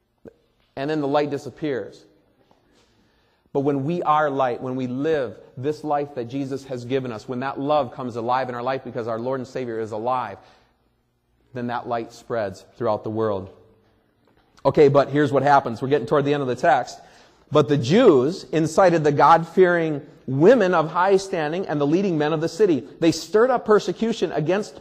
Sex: male